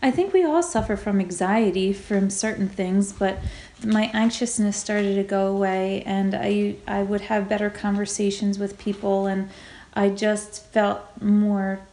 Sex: female